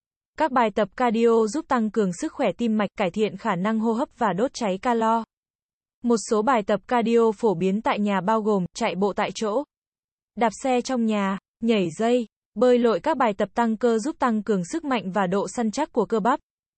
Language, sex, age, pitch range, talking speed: Vietnamese, female, 20-39, 205-245 Hz, 220 wpm